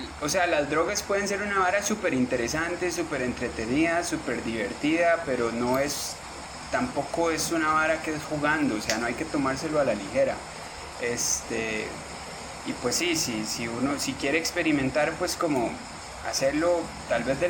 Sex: male